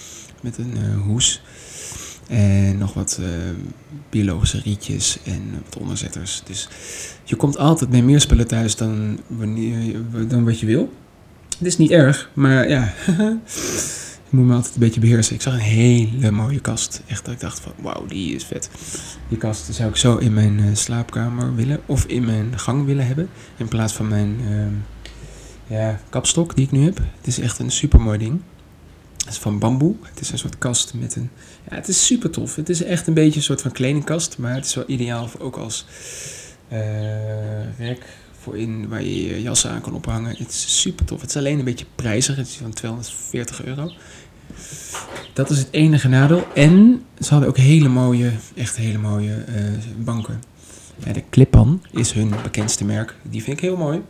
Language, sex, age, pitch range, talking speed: Dutch, male, 20-39, 110-135 Hz, 195 wpm